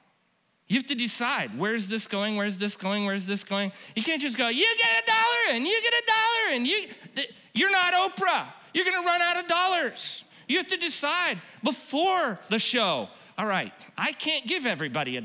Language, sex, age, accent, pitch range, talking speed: English, male, 40-59, American, 200-285 Hz, 205 wpm